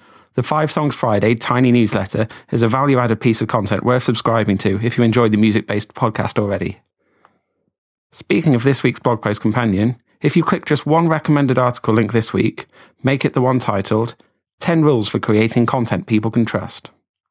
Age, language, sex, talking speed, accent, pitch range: 30-49, English, male, 180 wpm, British, 110-135 Hz